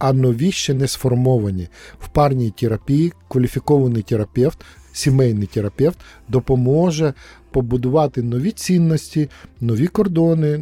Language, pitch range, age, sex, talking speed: Ukrainian, 120-150 Hz, 50-69, male, 100 wpm